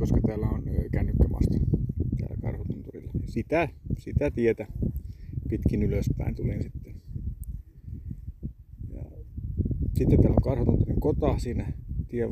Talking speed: 100 wpm